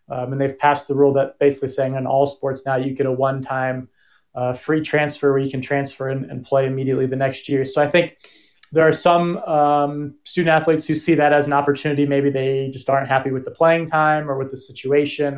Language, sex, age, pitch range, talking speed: English, male, 20-39, 135-150 Hz, 230 wpm